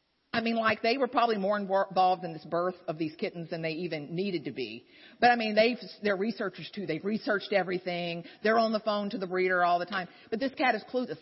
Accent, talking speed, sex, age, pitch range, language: American, 240 wpm, female, 50-69, 185-240 Hz, English